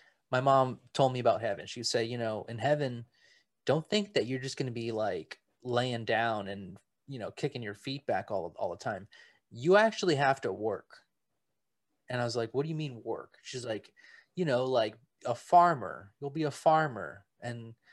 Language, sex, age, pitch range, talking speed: English, male, 20-39, 115-160 Hz, 200 wpm